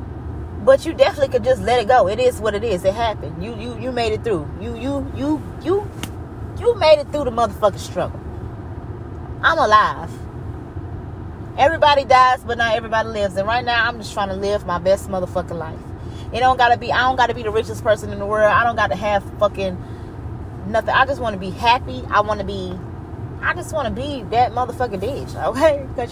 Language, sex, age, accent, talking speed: English, female, 20-39, American, 210 wpm